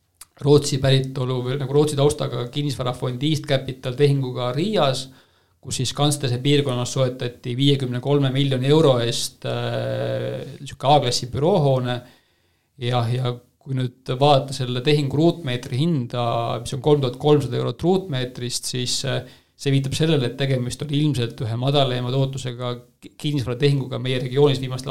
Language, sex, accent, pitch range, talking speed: English, male, Finnish, 120-140 Hz, 125 wpm